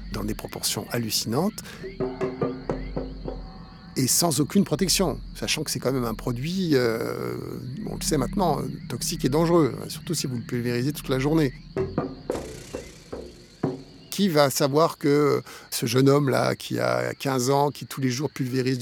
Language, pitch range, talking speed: French, 125-160 Hz, 150 wpm